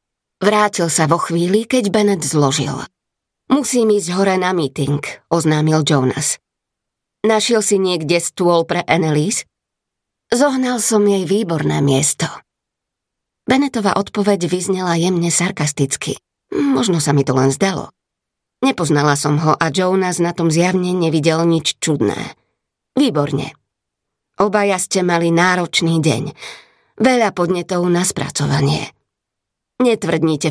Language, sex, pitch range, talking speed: Slovak, female, 150-200 Hz, 115 wpm